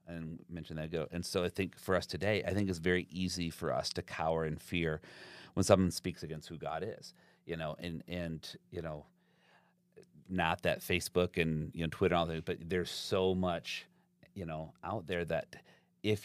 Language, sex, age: English, male, 30-49